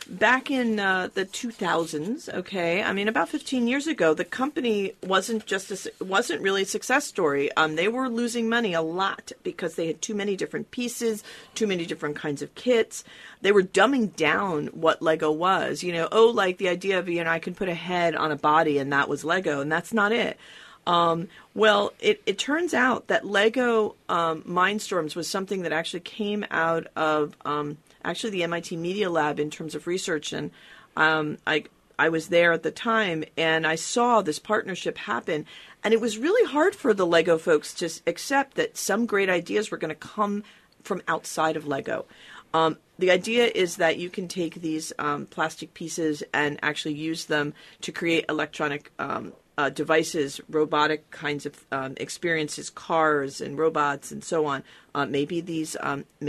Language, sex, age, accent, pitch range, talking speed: English, female, 40-59, American, 155-210 Hz, 190 wpm